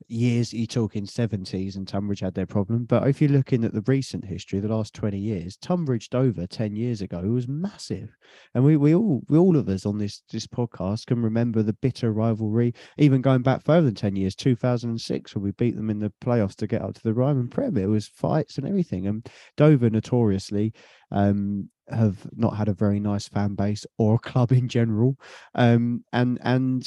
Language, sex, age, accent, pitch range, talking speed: English, male, 20-39, British, 105-130 Hz, 210 wpm